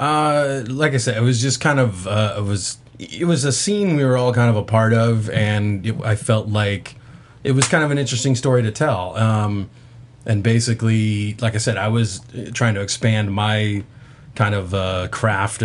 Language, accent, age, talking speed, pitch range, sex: English, American, 30-49, 205 wpm, 105-125 Hz, male